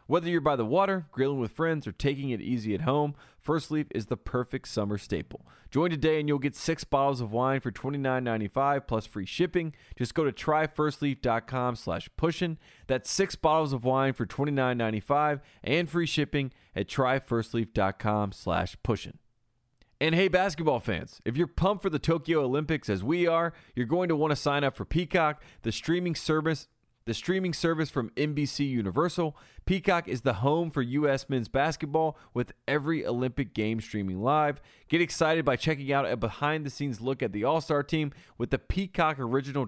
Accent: American